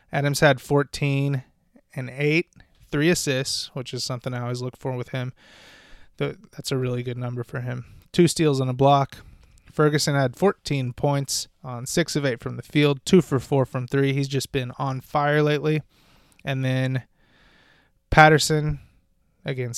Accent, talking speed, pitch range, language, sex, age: American, 165 wpm, 125-150 Hz, English, male, 20-39